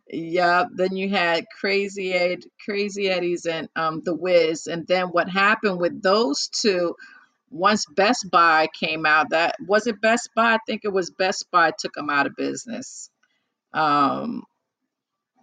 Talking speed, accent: 165 wpm, American